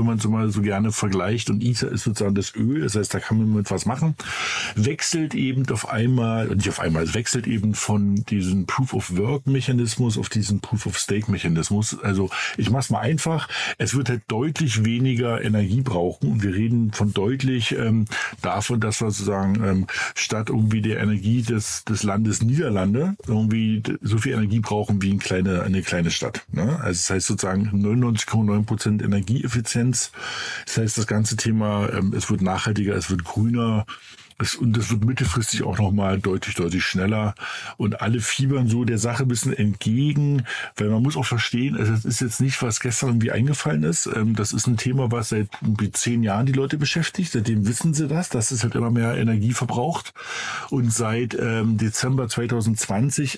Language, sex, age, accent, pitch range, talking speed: German, male, 50-69, German, 105-125 Hz, 175 wpm